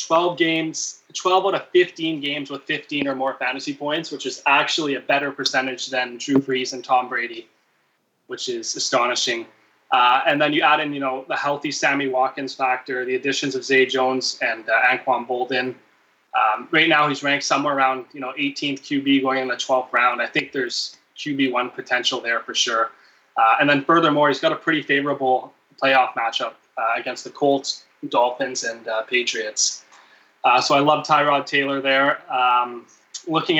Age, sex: 20-39, male